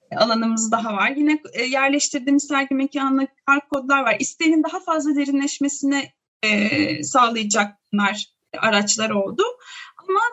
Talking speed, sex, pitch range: 120 wpm, female, 275-330 Hz